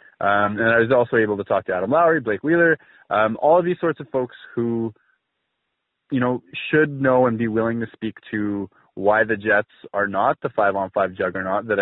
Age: 20-39